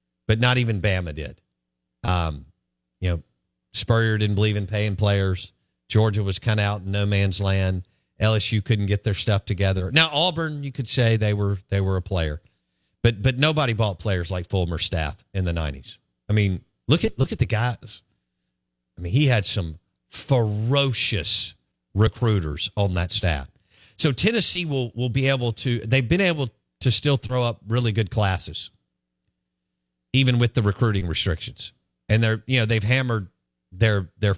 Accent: American